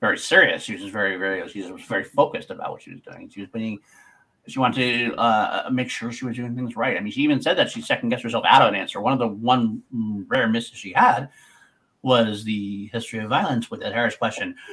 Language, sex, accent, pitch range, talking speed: English, male, American, 105-130 Hz, 245 wpm